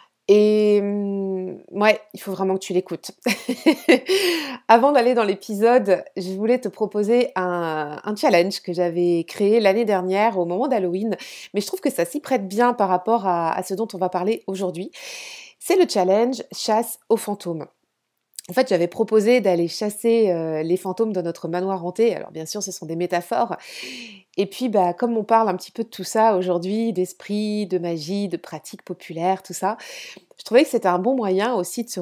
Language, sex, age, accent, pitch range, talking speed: French, female, 30-49, French, 180-230 Hz, 195 wpm